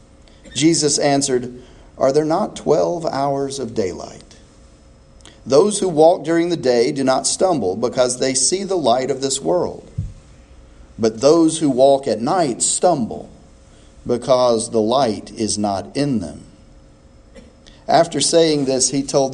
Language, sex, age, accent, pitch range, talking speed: English, male, 40-59, American, 100-135 Hz, 140 wpm